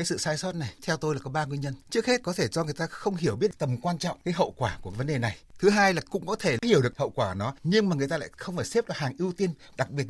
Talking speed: 340 wpm